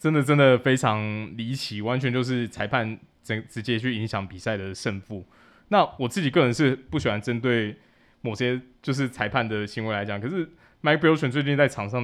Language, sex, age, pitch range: Chinese, male, 20-39, 105-130 Hz